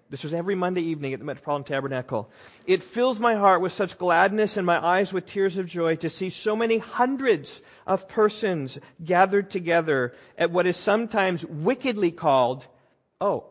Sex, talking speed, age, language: male, 175 wpm, 40-59, English